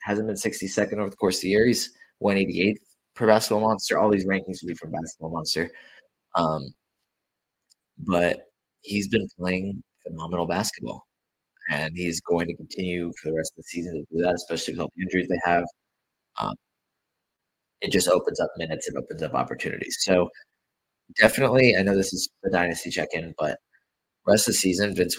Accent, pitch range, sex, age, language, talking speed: American, 85-110 Hz, male, 20-39, English, 180 wpm